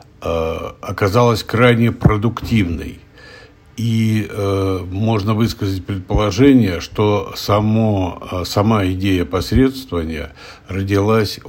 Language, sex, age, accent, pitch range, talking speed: Russian, male, 60-79, native, 90-105 Hz, 75 wpm